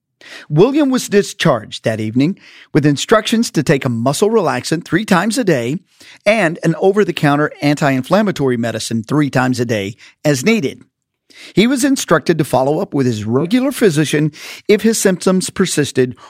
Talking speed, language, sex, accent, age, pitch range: 150 wpm, English, male, American, 50-69, 140-205 Hz